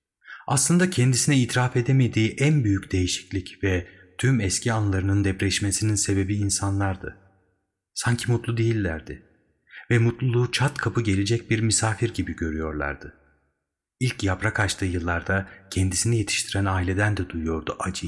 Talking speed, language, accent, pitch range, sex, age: 120 wpm, Turkish, native, 90-115 Hz, male, 30-49